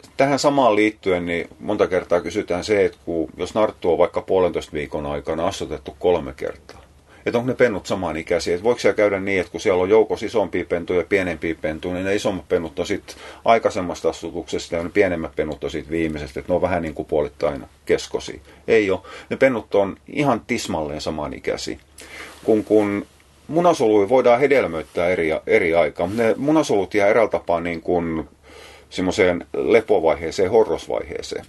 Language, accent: Finnish, native